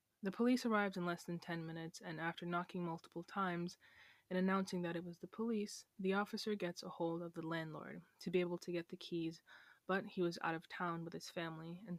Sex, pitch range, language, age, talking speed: female, 165-190 Hz, English, 20-39, 225 wpm